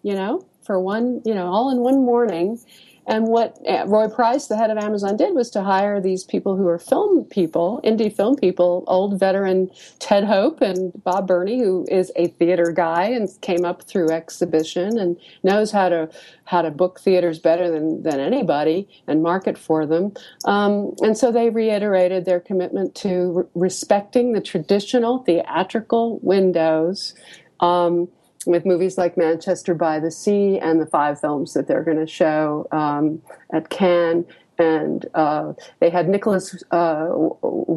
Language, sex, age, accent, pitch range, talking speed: English, female, 50-69, American, 160-200 Hz, 165 wpm